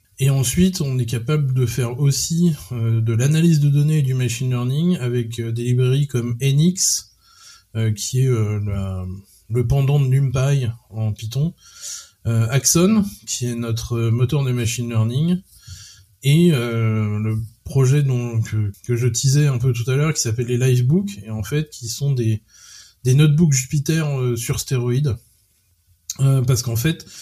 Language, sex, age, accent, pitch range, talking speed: French, male, 20-39, French, 110-140 Hz, 170 wpm